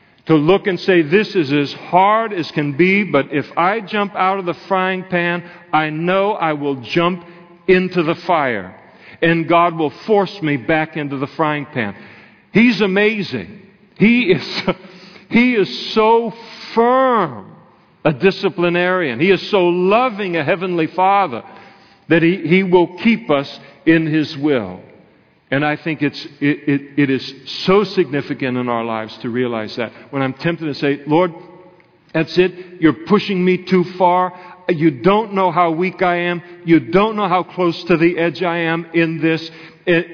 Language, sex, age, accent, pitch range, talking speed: English, male, 50-69, American, 155-185 Hz, 165 wpm